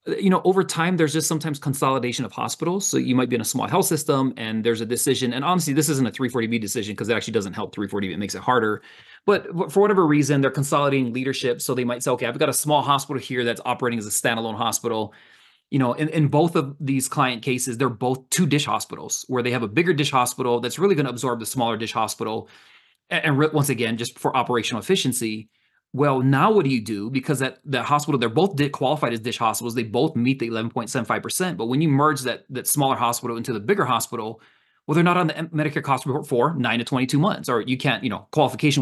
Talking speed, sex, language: 235 wpm, male, English